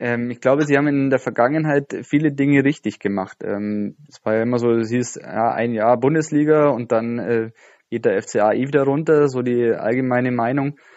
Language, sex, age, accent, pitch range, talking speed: German, male, 20-39, German, 115-135 Hz, 180 wpm